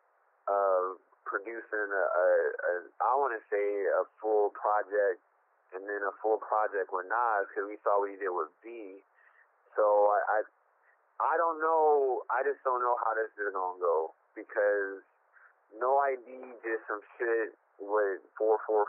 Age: 30-49